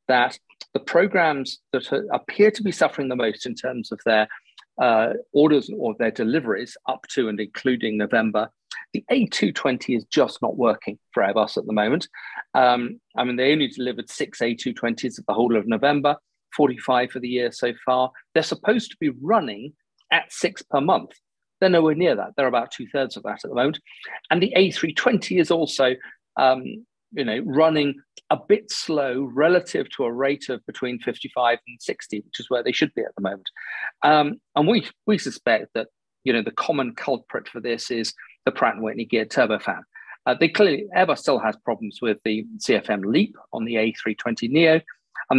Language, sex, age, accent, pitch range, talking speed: English, male, 40-59, British, 115-150 Hz, 185 wpm